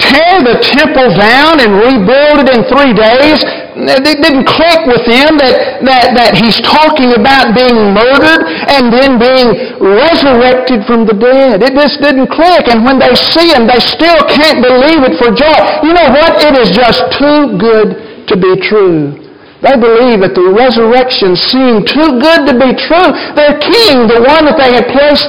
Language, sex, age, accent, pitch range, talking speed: English, male, 60-79, American, 225-290 Hz, 180 wpm